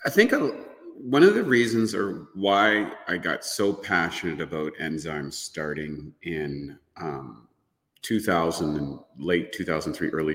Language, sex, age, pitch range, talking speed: English, male, 40-59, 85-130 Hz, 130 wpm